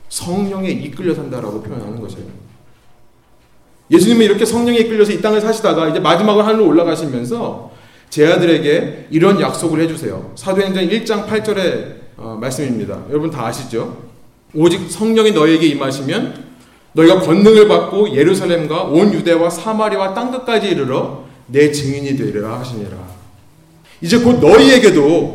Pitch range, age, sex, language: 130-215 Hz, 30-49, male, Korean